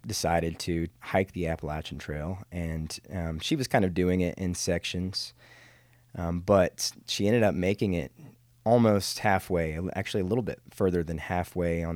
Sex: male